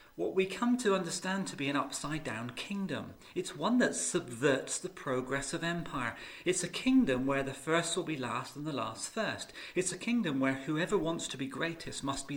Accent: British